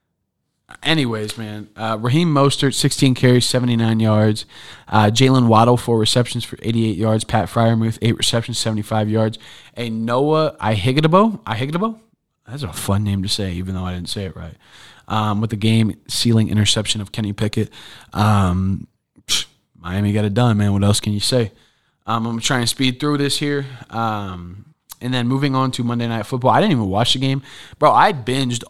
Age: 20-39